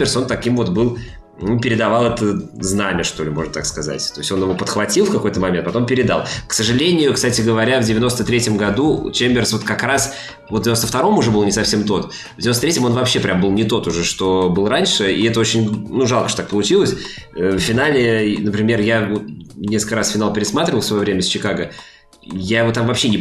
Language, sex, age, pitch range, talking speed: Russian, male, 20-39, 100-120 Hz, 205 wpm